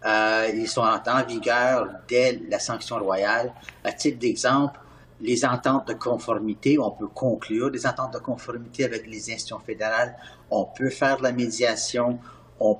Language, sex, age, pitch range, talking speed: French, male, 50-69, 115-145 Hz, 170 wpm